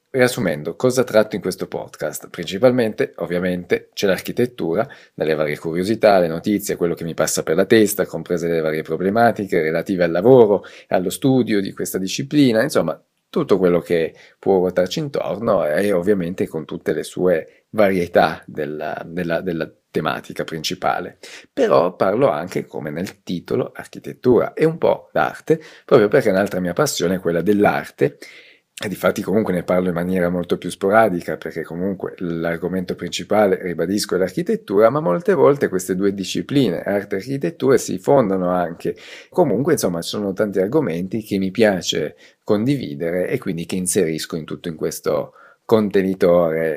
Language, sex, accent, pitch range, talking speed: Italian, male, native, 85-110 Hz, 155 wpm